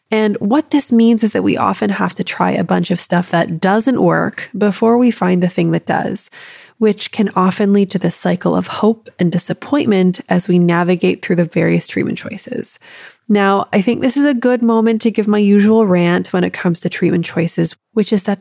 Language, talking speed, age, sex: English, 215 wpm, 20-39, female